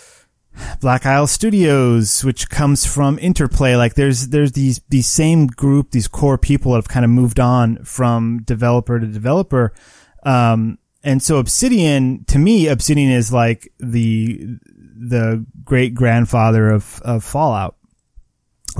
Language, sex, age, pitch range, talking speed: English, male, 30-49, 115-145 Hz, 140 wpm